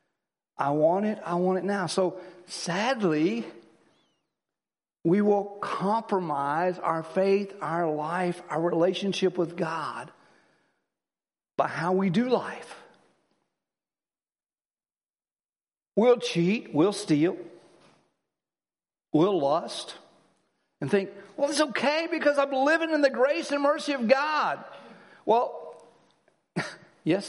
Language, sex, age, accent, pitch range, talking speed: English, male, 60-79, American, 170-245 Hz, 105 wpm